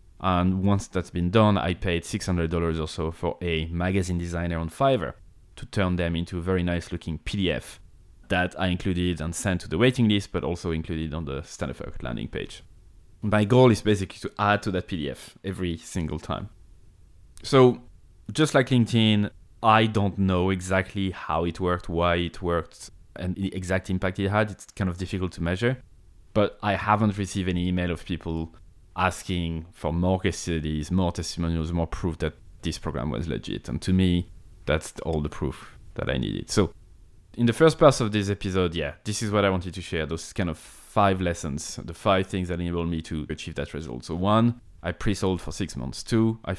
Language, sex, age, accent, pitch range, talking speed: English, male, 20-39, French, 85-100 Hz, 195 wpm